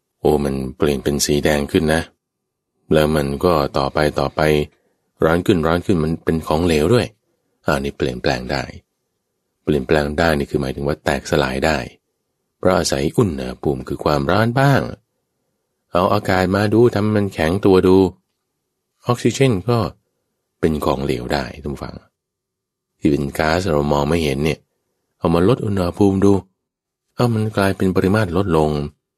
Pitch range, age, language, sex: 75-105 Hz, 20-39, English, male